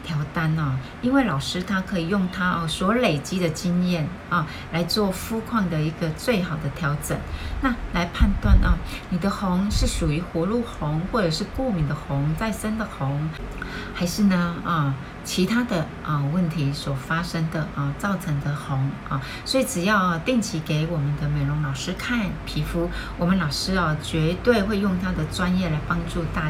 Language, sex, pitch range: Chinese, female, 150-190 Hz